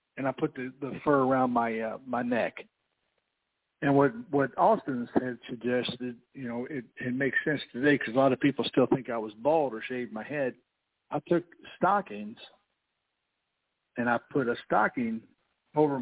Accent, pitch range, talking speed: American, 115-135 Hz, 175 wpm